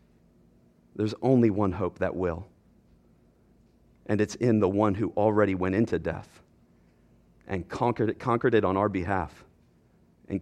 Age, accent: 40-59, American